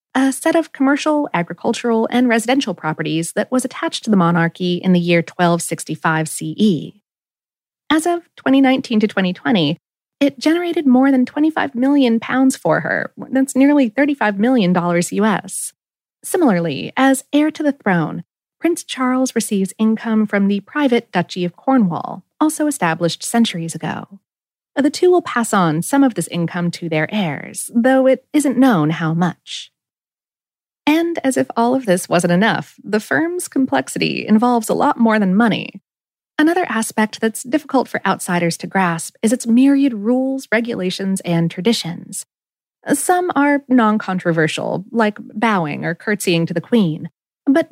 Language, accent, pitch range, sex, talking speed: English, American, 175-270 Hz, female, 150 wpm